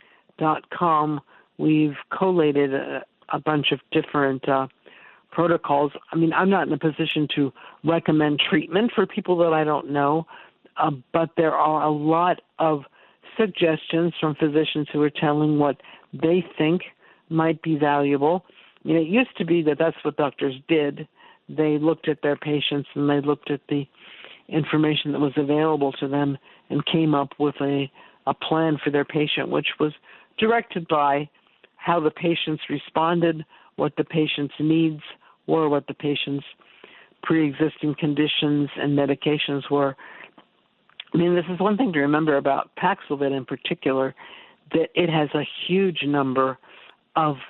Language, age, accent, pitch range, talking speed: English, 60-79, American, 145-160 Hz, 155 wpm